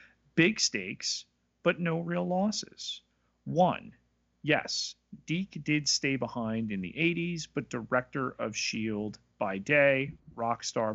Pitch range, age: 105-175 Hz, 40-59